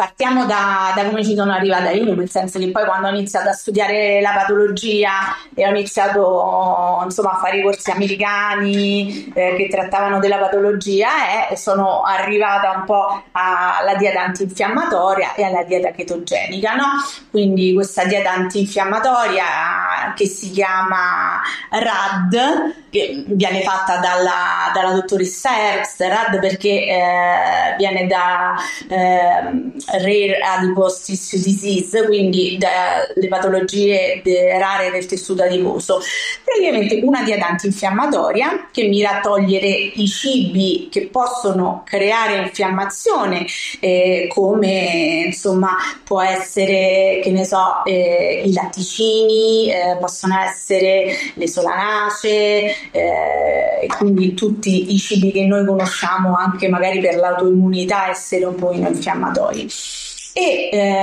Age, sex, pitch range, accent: 20-39, female, 185-210 Hz, native